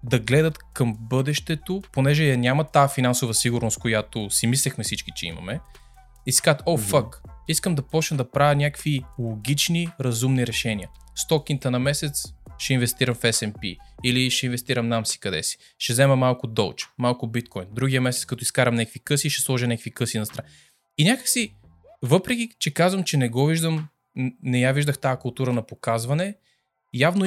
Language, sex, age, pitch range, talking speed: Bulgarian, male, 20-39, 120-150 Hz, 170 wpm